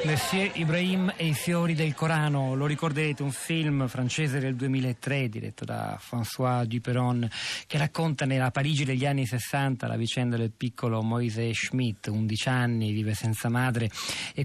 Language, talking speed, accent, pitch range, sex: Italian, 155 wpm, native, 120-140 Hz, male